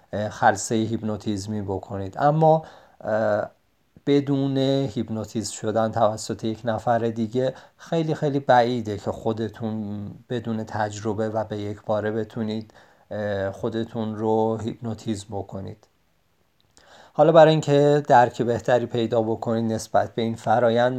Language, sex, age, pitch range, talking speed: Persian, male, 40-59, 110-125 Hz, 110 wpm